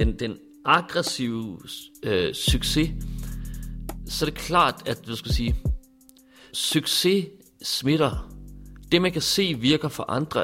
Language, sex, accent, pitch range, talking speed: Danish, male, native, 120-160 Hz, 125 wpm